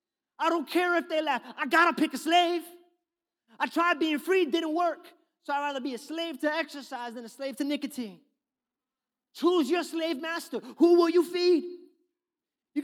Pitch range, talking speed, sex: 185-305 Hz, 185 wpm, male